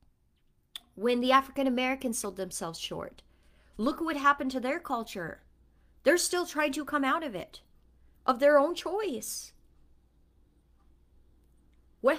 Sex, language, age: female, English, 30-49